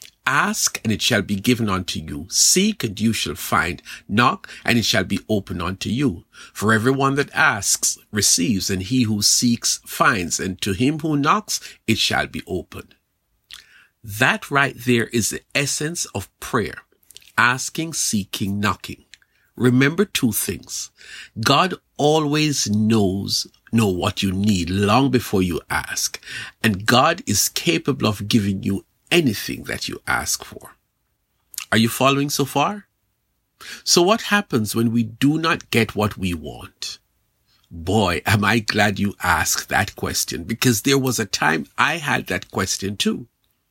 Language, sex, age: English, male, 50-69